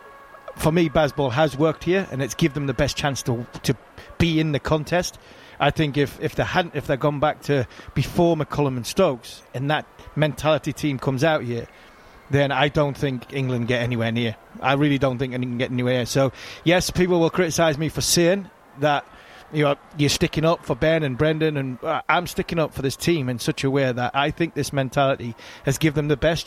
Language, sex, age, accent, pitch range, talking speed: English, male, 30-49, British, 130-160 Hz, 220 wpm